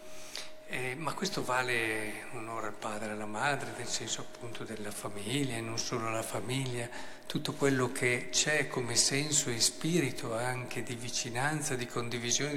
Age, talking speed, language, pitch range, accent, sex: 50-69, 160 wpm, Italian, 120-150 Hz, native, male